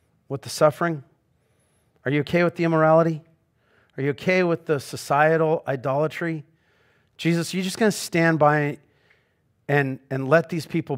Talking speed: 155 wpm